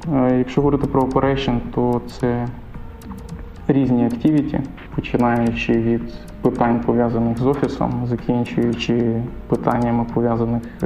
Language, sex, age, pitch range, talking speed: Ukrainian, male, 20-39, 120-135 Hz, 95 wpm